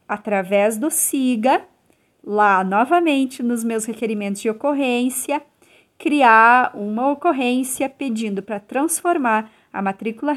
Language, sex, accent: Portuguese, female, Brazilian